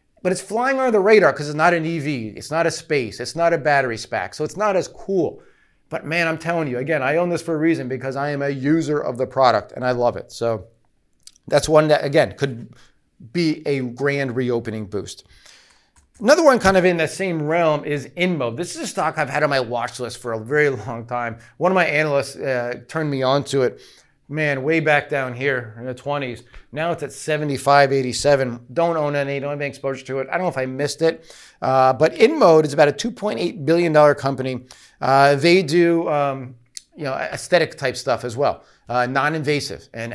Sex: male